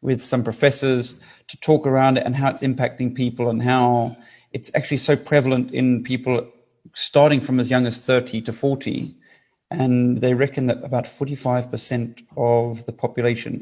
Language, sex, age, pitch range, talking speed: English, male, 40-59, 120-145 Hz, 165 wpm